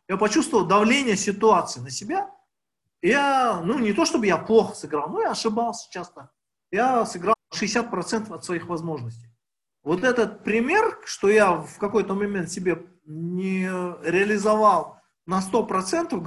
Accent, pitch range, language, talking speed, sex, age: native, 165-230 Hz, Russian, 135 wpm, male, 40-59